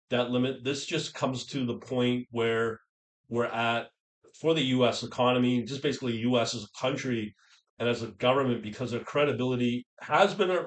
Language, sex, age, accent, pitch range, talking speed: English, male, 40-59, American, 115-125 Hz, 170 wpm